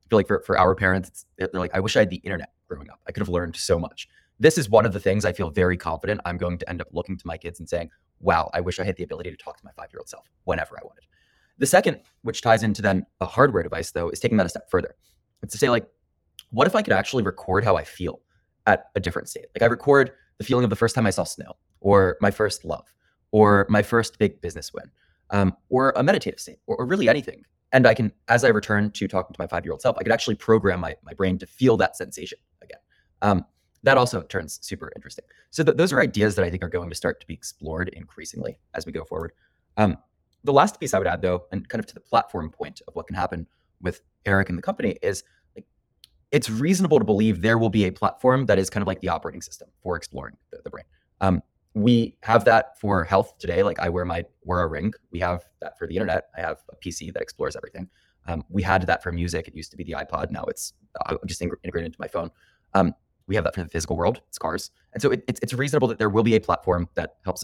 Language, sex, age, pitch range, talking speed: English, male, 20-39, 90-110 Hz, 260 wpm